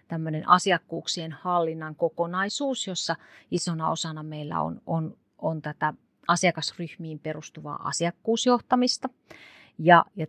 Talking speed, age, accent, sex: 95 wpm, 30-49, native, female